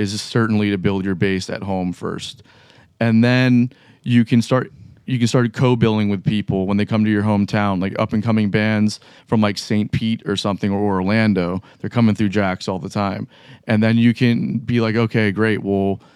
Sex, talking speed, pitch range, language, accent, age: male, 205 wpm, 100-120 Hz, English, American, 30-49